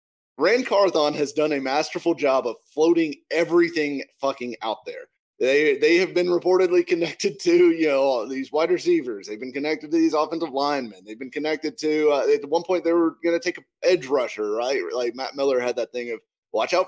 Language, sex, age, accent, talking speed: English, male, 30-49, American, 205 wpm